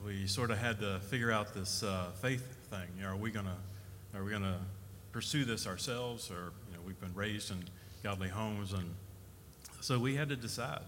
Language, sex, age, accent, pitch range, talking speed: English, male, 40-59, American, 95-115 Hz, 205 wpm